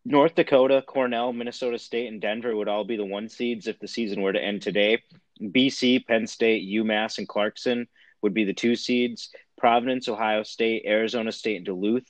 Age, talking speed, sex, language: 30-49, 190 wpm, male, English